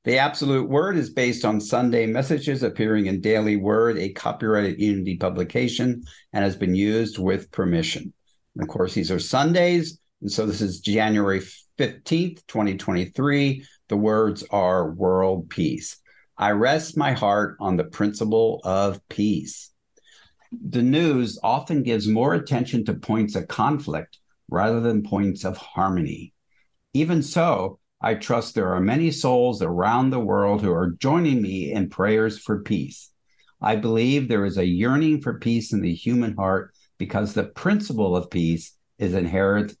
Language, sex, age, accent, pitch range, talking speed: English, male, 50-69, American, 95-125 Hz, 155 wpm